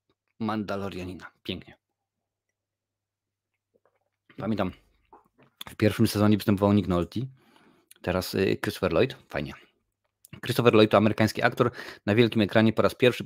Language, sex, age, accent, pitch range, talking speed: Polish, male, 30-49, native, 95-110 Hz, 110 wpm